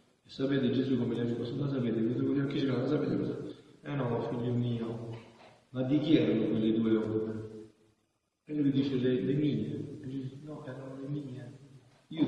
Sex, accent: male, native